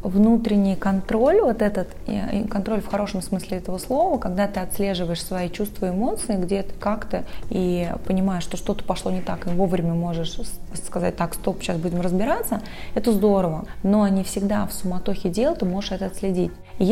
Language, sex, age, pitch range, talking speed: Russian, female, 20-39, 180-215 Hz, 170 wpm